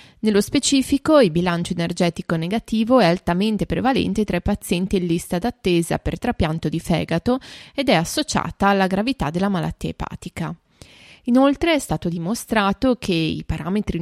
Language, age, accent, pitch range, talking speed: Italian, 20-39, native, 170-230 Hz, 145 wpm